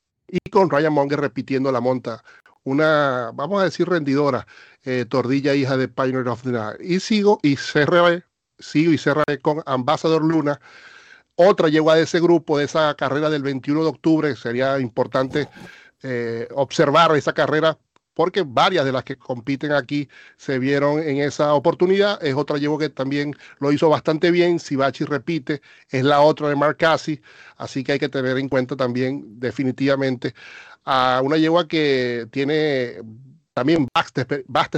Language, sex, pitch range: Spanish, male, 130-155 Hz